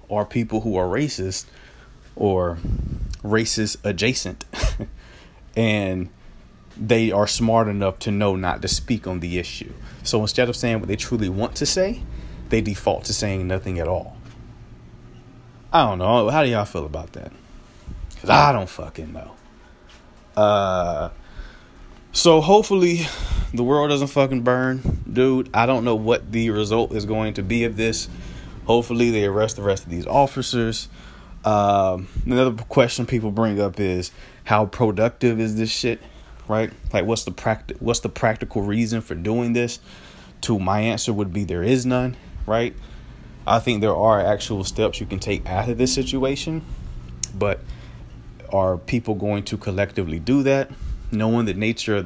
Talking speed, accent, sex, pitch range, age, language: 160 wpm, American, male, 95-120 Hz, 30-49, English